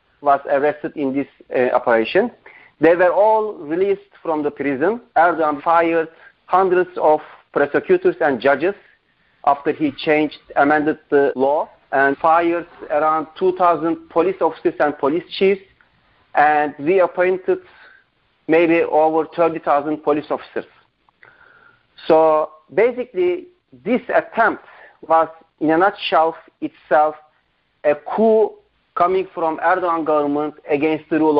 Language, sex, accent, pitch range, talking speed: English, male, Turkish, 155-195 Hz, 115 wpm